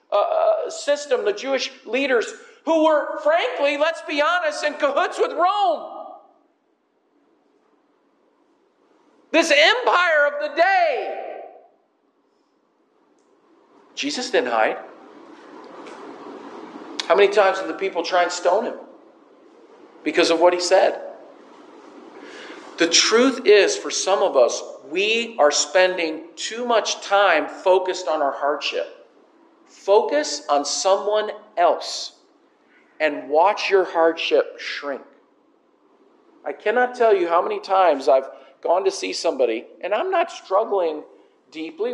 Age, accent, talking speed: 50-69, American, 115 wpm